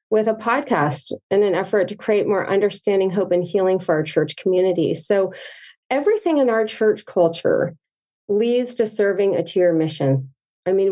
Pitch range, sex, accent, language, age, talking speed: 180-240 Hz, female, American, English, 40-59, 170 wpm